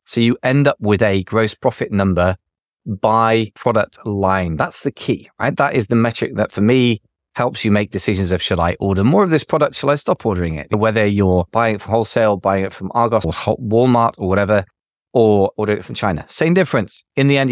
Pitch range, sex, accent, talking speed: 100-130 Hz, male, British, 220 wpm